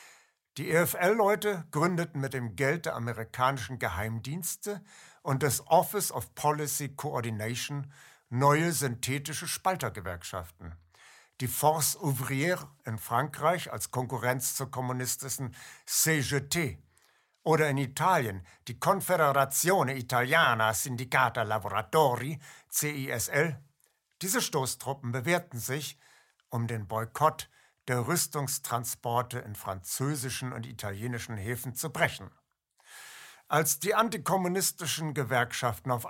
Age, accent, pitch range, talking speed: 60-79, German, 120-155 Hz, 95 wpm